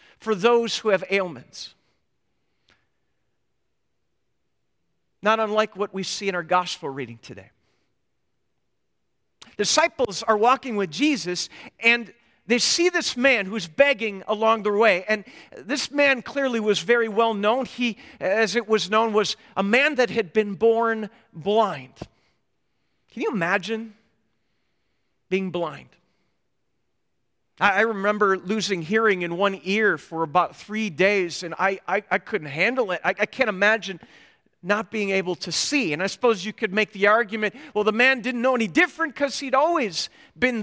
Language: English